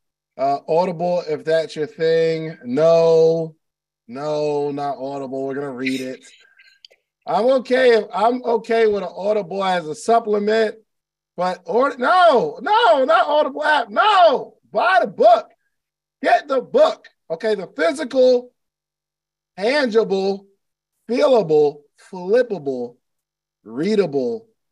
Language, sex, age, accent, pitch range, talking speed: English, male, 20-39, American, 165-240 Hz, 110 wpm